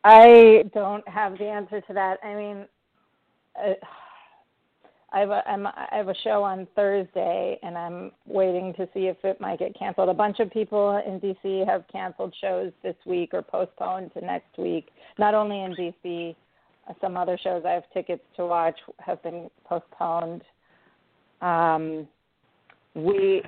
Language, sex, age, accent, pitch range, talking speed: English, female, 40-59, American, 170-200 Hz, 160 wpm